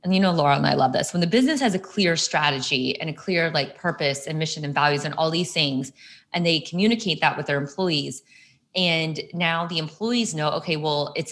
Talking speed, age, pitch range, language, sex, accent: 230 wpm, 20-39, 155-190 Hz, English, female, American